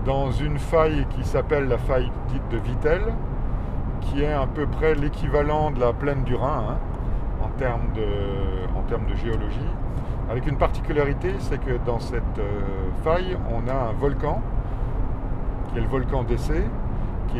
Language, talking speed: French, 160 wpm